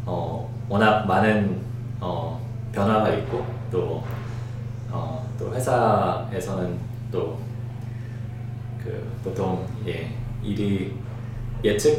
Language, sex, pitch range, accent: Korean, male, 110-120 Hz, native